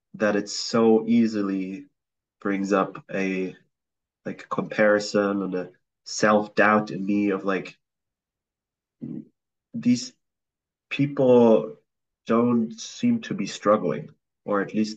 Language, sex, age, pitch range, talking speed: English, male, 30-49, 100-115 Hz, 105 wpm